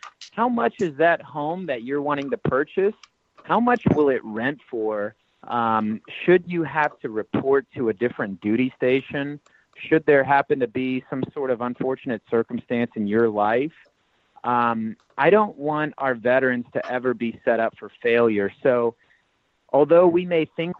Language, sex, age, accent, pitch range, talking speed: English, male, 30-49, American, 120-150 Hz, 165 wpm